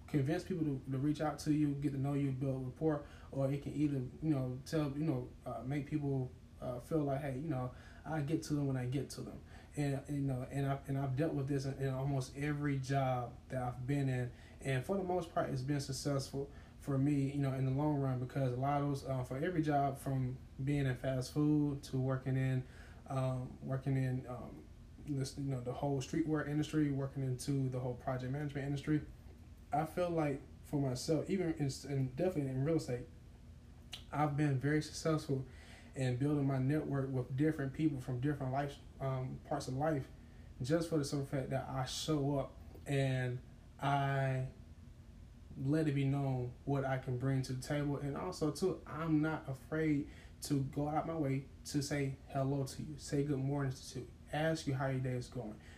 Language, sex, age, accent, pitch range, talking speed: English, male, 20-39, American, 130-150 Hz, 205 wpm